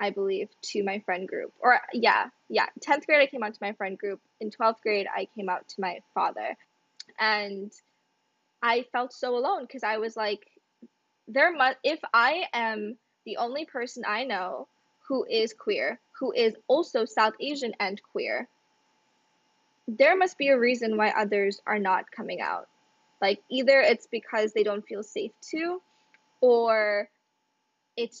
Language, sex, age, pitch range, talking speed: English, female, 10-29, 200-250 Hz, 165 wpm